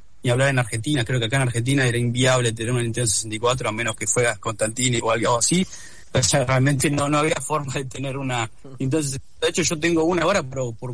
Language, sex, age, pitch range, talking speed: Spanish, male, 20-39, 115-145 Hz, 230 wpm